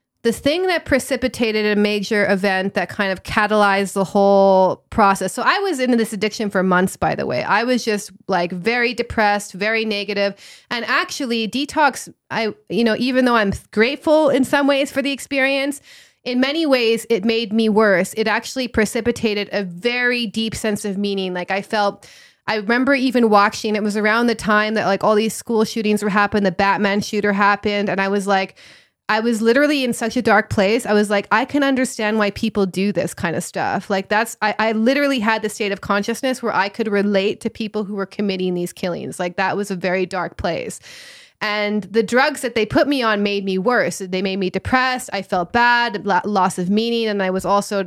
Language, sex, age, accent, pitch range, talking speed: English, female, 20-39, American, 200-235 Hz, 210 wpm